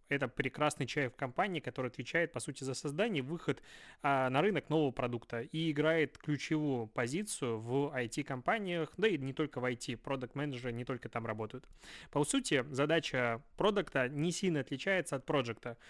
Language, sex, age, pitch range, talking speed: Russian, male, 20-39, 130-155 Hz, 160 wpm